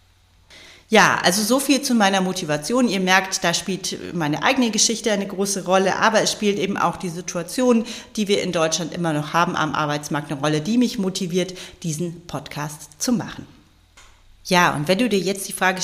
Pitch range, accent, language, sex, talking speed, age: 160-205 Hz, German, German, female, 190 wpm, 40-59